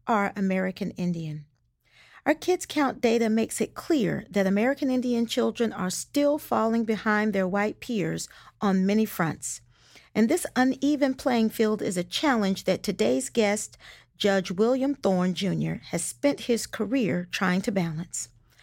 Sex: female